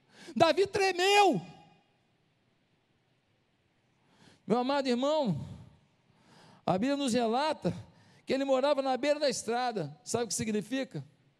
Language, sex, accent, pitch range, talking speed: Portuguese, male, Brazilian, 175-250 Hz, 105 wpm